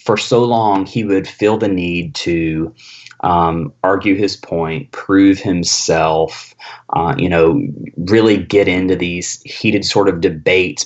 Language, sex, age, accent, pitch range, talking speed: English, male, 30-49, American, 90-125 Hz, 145 wpm